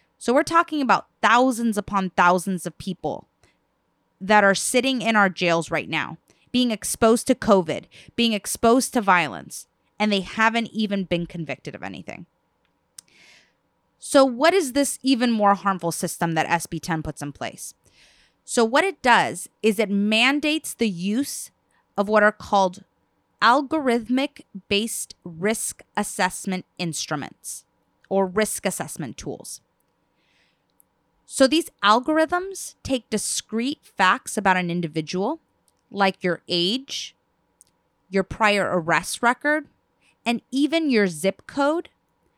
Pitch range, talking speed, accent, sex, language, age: 185-265 Hz, 125 wpm, American, female, English, 20-39